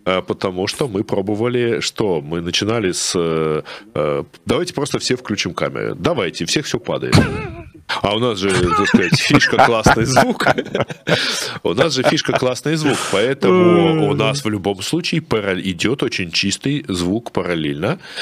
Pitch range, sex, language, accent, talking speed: 100-140 Hz, male, Russian, native, 145 wpm